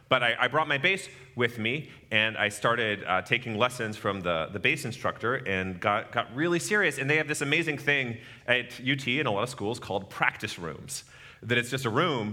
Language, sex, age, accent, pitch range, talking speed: English, male, 30-49, American, 110-140 Hz, 220 wpm